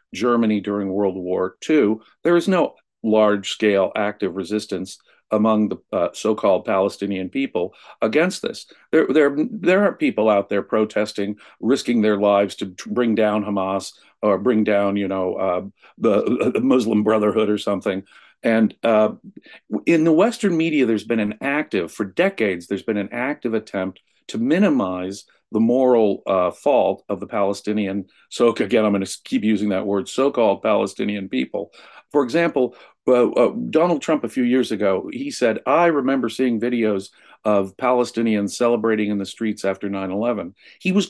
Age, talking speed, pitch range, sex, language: 50-69, 160 wpm, 100-140 Hz, male, English